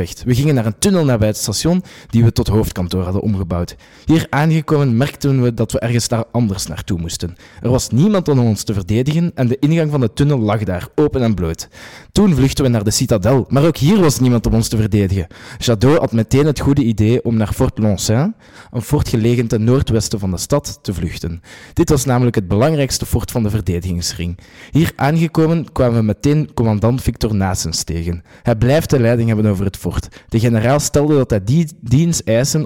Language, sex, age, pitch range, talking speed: Dutch, male, 20-39, 100-135 Hz, 210 wpm